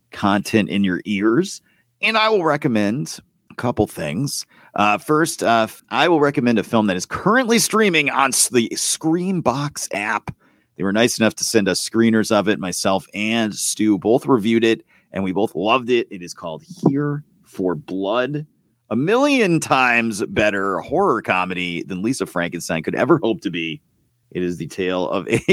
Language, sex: English, male